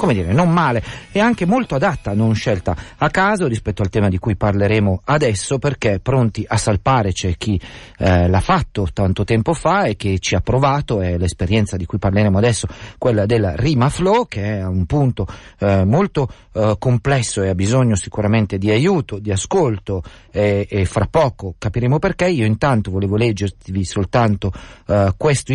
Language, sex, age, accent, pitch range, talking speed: Italian, male, 40-59, native, 100-140 Hz, 175 wpm